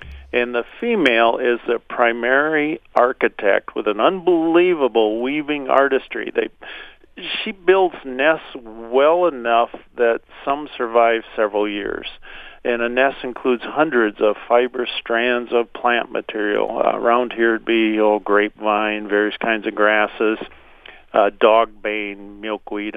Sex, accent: male, American